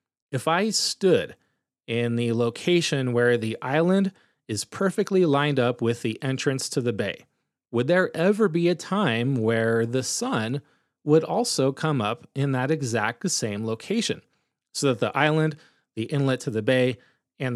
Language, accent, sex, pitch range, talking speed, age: English, American, male, 120-155 Hz, 160 wpm, 30-49